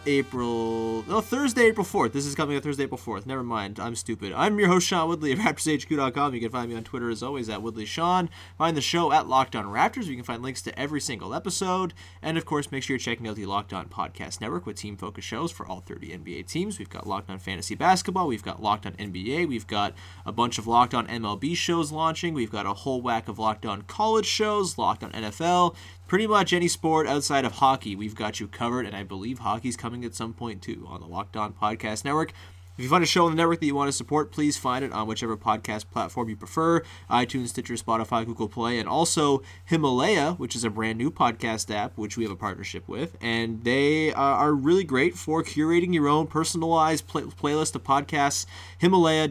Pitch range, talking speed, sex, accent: 105-150 Hz, 225 wpm, male, American